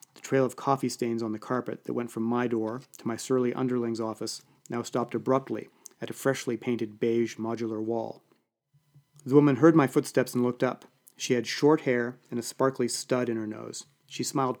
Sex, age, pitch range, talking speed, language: male, 30-49, 120-145 Hz, 195 wpm, English